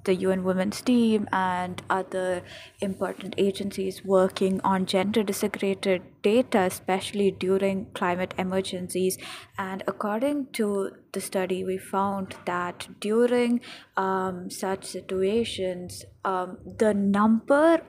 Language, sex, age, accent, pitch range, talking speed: English, female, 20-39, Indian, 185-215 Hz, 105 wpm